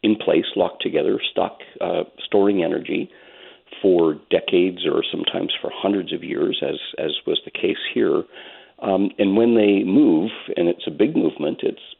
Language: English